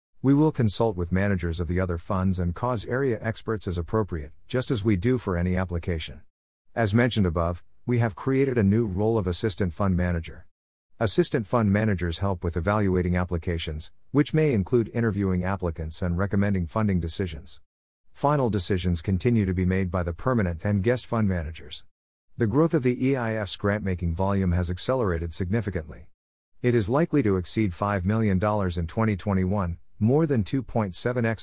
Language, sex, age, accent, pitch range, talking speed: English, male, 50-69, American, 90-115 Hz, 165 wpm